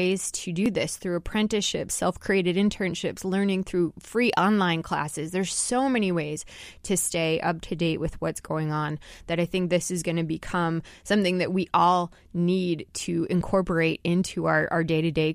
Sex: female